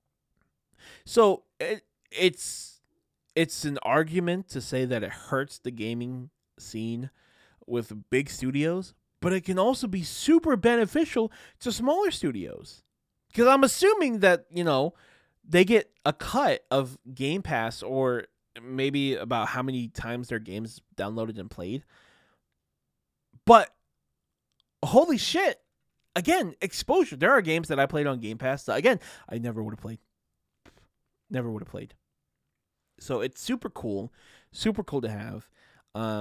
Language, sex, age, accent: English, male, 20-39, American